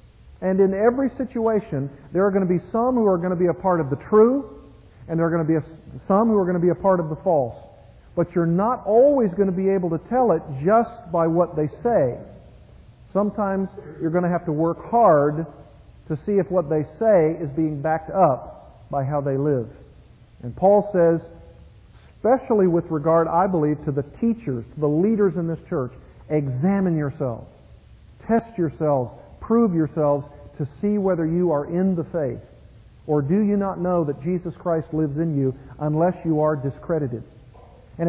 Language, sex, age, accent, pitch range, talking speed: English, male, 50-69, American, 145-190 Hz, 190 wpm